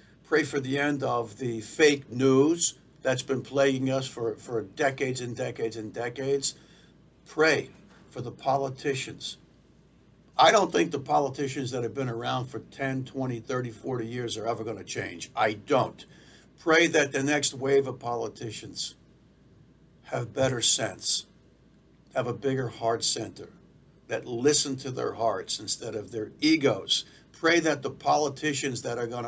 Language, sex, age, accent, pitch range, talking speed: English, male, 60-79, American, 120-145 Hz, 155 wpm